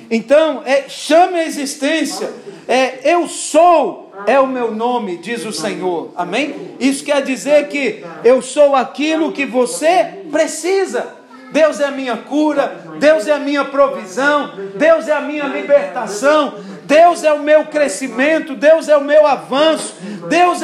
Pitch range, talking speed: 245-315 Hz, 145 wpm